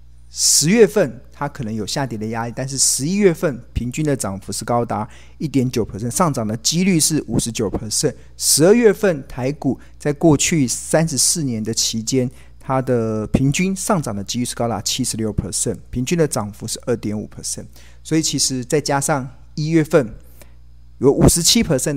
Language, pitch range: Chinese, 110-150 Hz